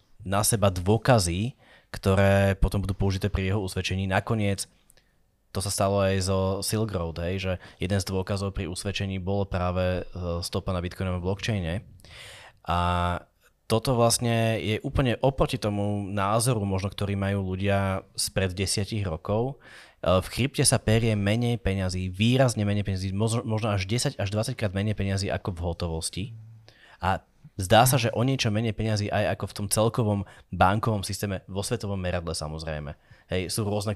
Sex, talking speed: male, 155 wpm